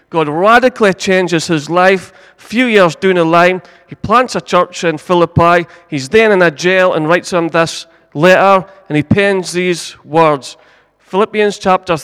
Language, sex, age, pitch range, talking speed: English, male, 30-49, 165-225 Hz, 170 wpm